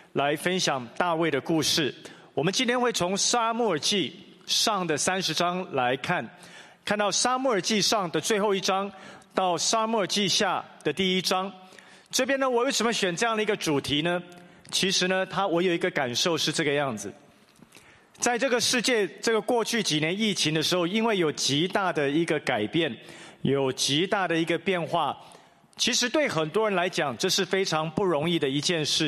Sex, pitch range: male, 170-225 Hz